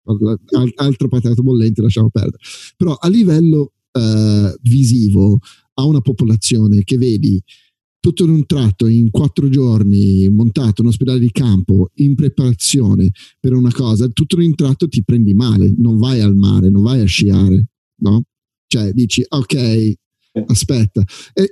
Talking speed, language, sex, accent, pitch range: 150 wpm, Italian, male, native, 105-135 Hz